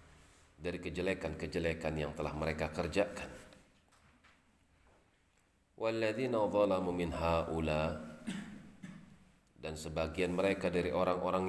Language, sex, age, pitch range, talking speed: Indonesian, male, 40-59, 80-95 Hz, 55 wpm